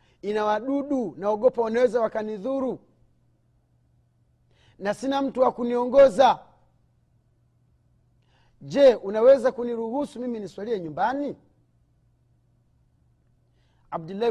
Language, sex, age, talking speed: Swahili, male, 40-59, 65 wpm